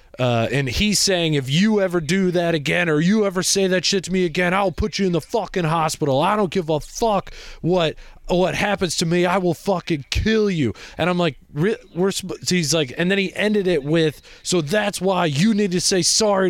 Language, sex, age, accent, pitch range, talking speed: English, male, 20-39, American, 155-195 Hz, 220 wpm